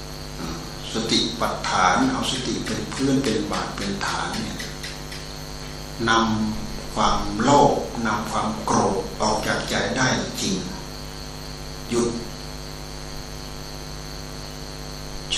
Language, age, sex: Thai, 60-79, male